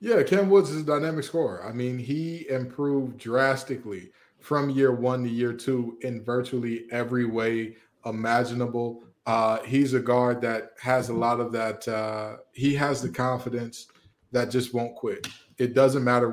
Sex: male